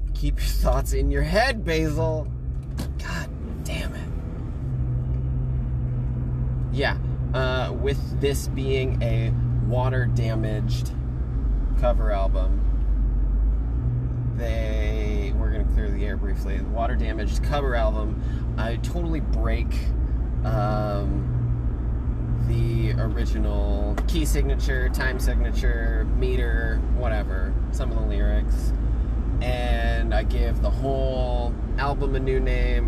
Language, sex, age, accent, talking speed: English, male, 20-39, American, 100 wpm